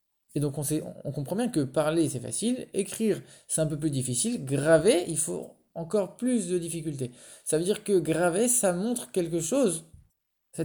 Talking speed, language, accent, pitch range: 190 wpm, English, French, 140-190 Hz